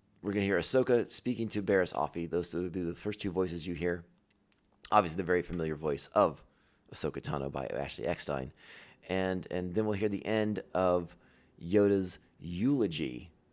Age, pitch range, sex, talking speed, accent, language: 30-49, 85-105 Hz, male, 175 wpm, American, English